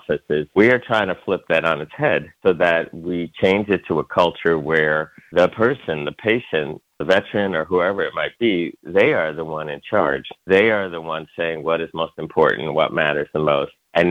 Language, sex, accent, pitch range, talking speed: English, male, American, 80-95 Hz, 215 wpm